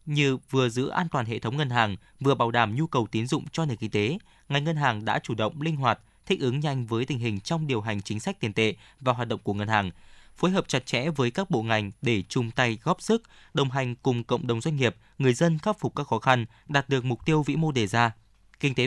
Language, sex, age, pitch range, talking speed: Vietnamese, male, 20-39, 110-150 Hz, 265 wpm